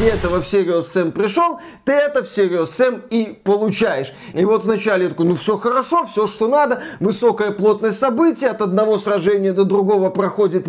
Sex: male